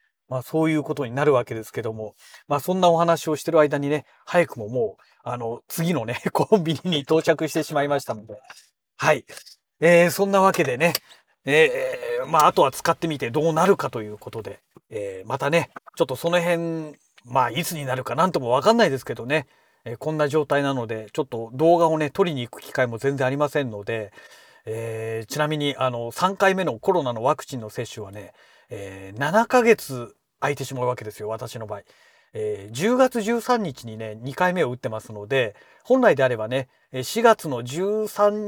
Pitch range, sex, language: 125-175 Hz, male, Japanese